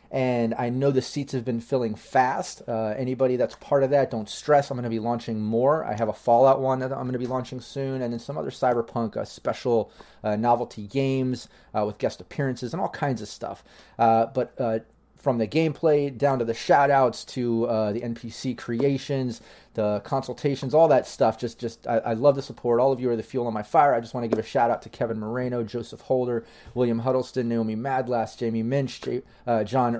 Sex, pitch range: male, 115-135 Hz